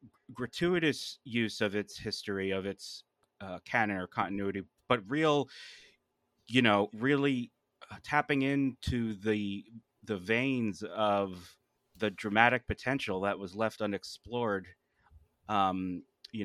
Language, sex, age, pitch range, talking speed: English, male, 30-49, 100-120 Hz, 115 wpm